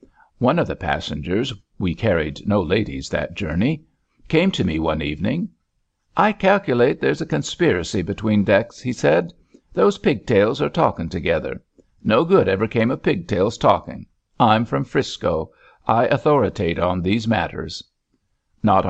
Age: 60-79